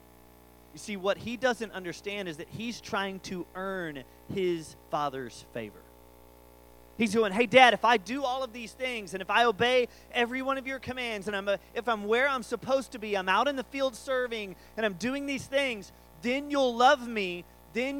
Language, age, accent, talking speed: English, 30-49, American, 205 wpm